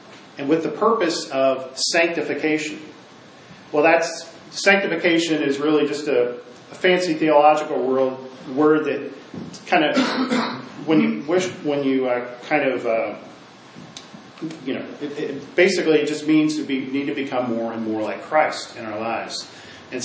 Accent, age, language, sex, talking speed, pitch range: American, 40-59, English, male, 145 wpm, 140-175 Hz